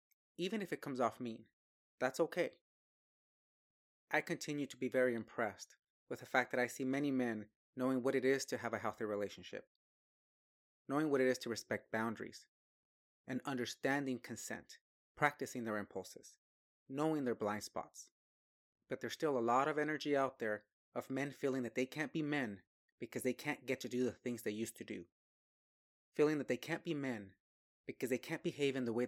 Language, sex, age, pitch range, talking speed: English, male, 30-49, 110-140 Hz, 185 wpm